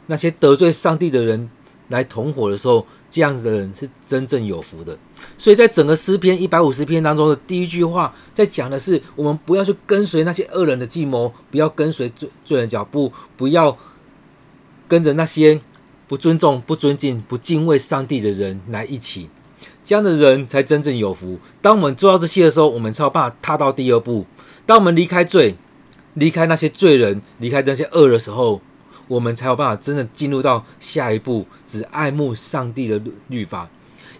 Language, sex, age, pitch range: Chinese, male, 40-59, 125-165 Hz